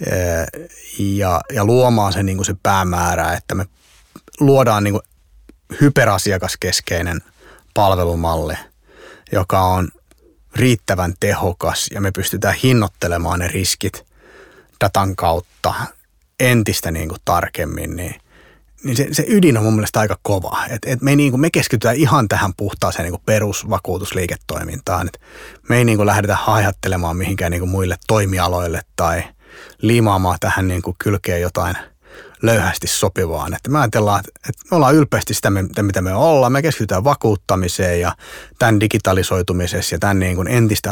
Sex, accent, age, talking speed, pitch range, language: male, native, 30-49, 140 wpm, 90-110 Hz, Finnish